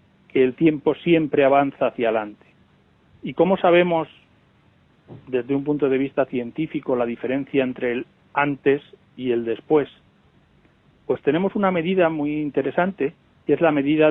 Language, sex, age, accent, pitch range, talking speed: Spanish, male, 40-59, Spanish, 125-165 Hz, 145 wpm